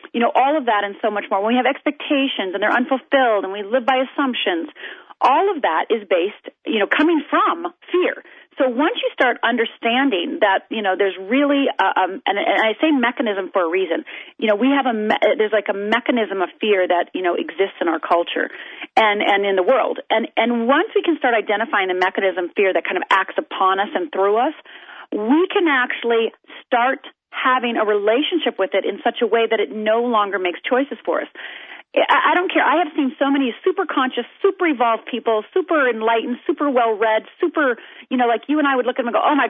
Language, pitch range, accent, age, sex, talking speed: English, 215-295 Hz, American, 40-59, female, 225 wpm